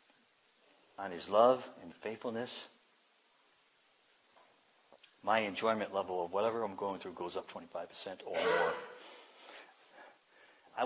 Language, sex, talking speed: English, male, 110 wpm